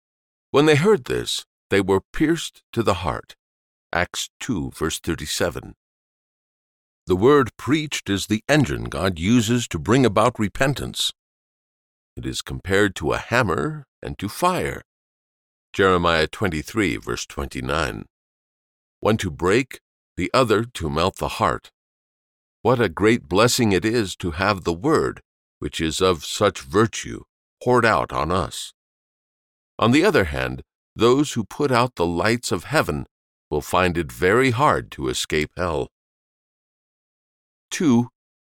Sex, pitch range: male, 75-120 Hz